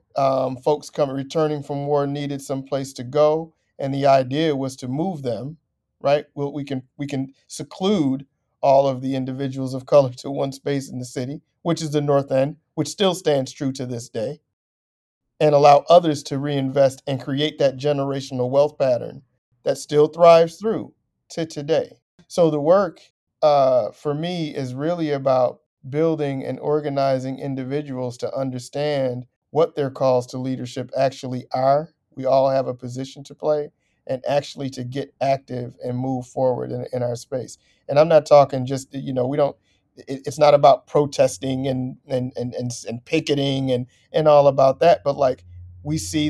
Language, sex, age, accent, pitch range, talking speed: English, male, 50-69, American, 130-145 Hz, 170 wpm